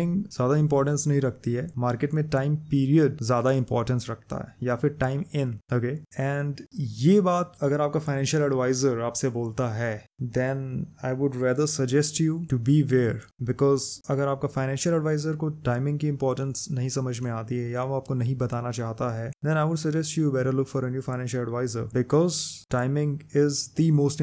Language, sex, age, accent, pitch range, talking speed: Hindi, male, 20-39, native, 125-150 Hz, 100 wpm